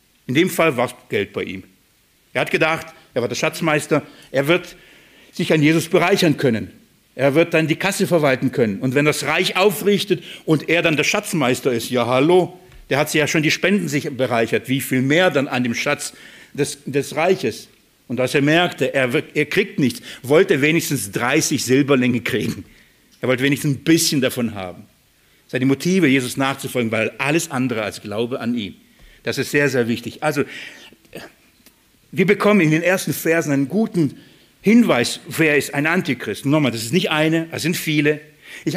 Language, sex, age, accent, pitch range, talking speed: German, male, 50-69, German, 130-170 Hz, 185 wpm